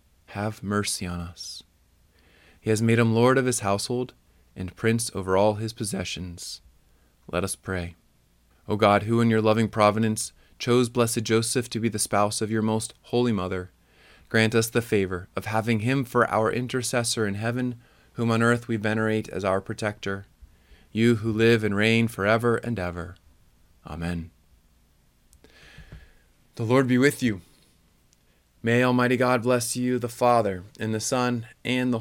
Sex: male